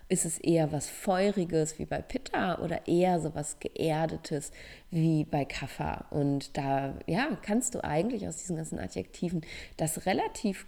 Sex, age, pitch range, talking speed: female, 30-49, 155-205 Hz, 155 wpm